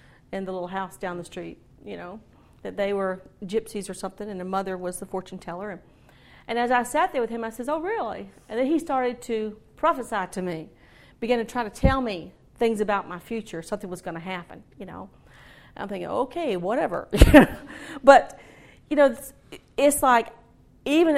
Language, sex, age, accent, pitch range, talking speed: English, female, 40-59, American, 190-260 Hz, 200 wpm